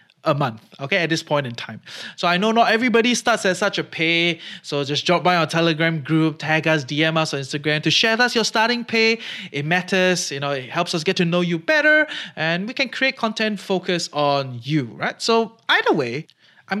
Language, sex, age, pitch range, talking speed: English, male, 20-39, 150-200 Hz, 225 wpm